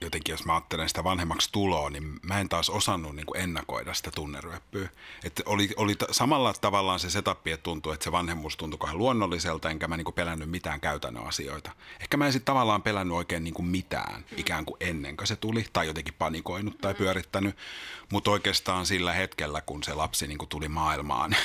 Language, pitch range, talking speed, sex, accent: Finnish, 80-100 Hz, 185 wpm, male, native